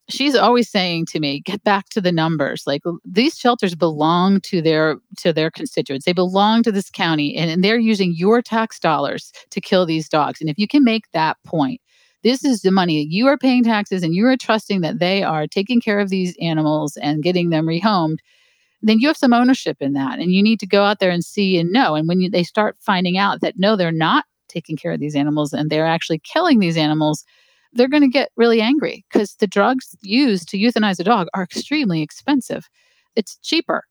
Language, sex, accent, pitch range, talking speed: English, female, American, 160-215 Hz, 215 wpm